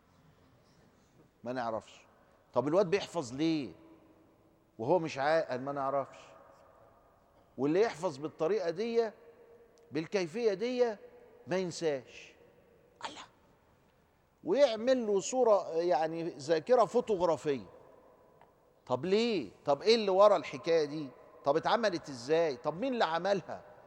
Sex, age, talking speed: male, 50-69, 105 wpm